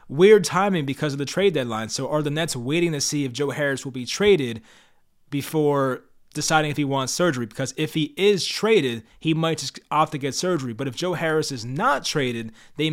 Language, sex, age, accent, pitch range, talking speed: English, male, 20-39, American, 130-155 Hz, 215 wpm